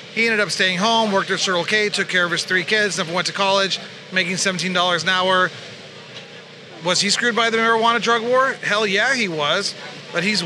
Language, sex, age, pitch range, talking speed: English, male, 30-49, 175-210 Hz, 210 wpm